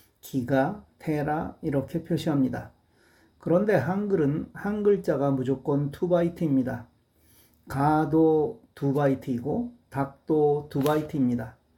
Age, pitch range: 40-59, 135-170 Hz